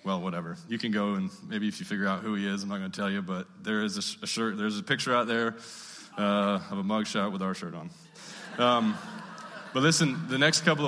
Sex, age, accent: male, 20-39, American